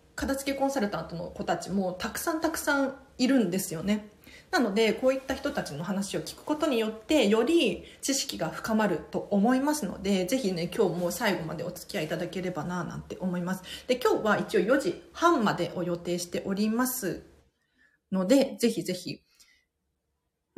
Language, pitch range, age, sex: Japanese, 175-240 Hz, 30-49, female